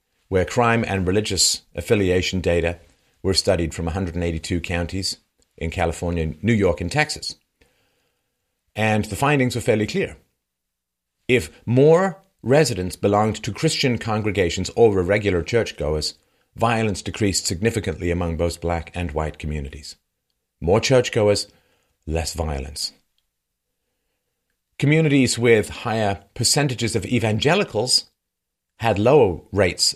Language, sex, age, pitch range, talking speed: English, male, 40-59, 85-115 Hz, 110 wpm